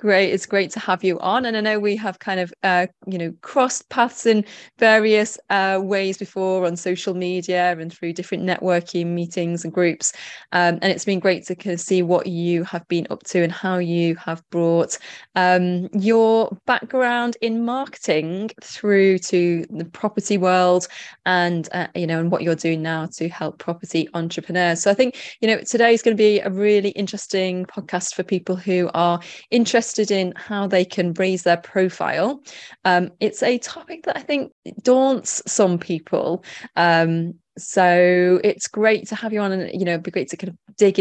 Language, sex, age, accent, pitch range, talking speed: English, female, 20-39, British, 170-210 Hz, 190 wpm